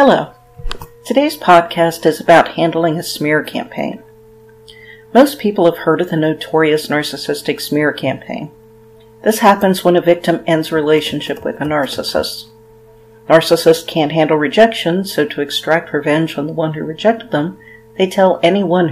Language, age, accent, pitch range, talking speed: English, 50-69, American, 140-170 Hz, 150 wpm